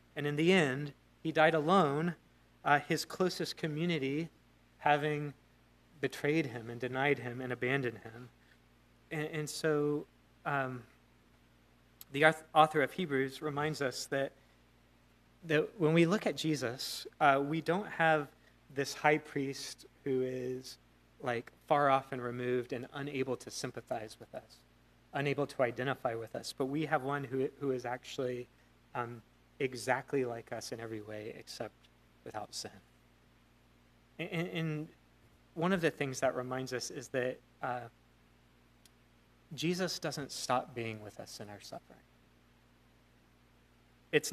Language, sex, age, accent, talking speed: English, male, 30-49, American, 140 wpm